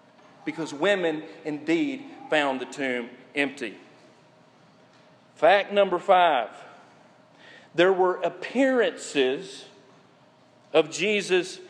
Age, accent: 40-59, American